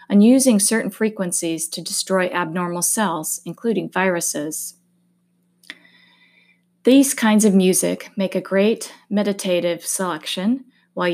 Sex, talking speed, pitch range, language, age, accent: female, 110 wpm, 175-205 Hz, English, 30-49, American